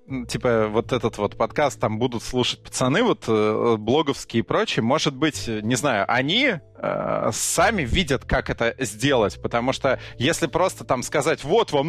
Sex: male